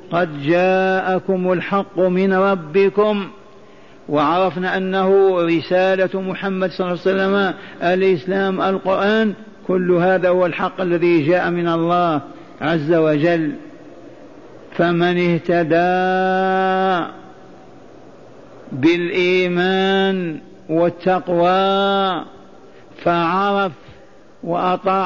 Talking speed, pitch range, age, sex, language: 75 wpm, 175-195 Hz, 50-69, male, Arabic